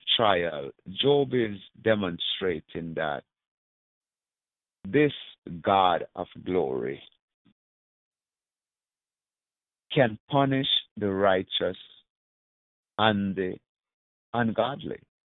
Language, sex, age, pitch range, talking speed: English, male, 50-69, 95-135 Hz, 65 wpm